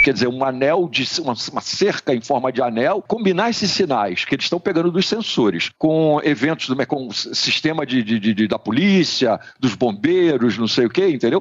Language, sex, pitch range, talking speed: Portuguese, male, 135-190 Hz, 170 wpm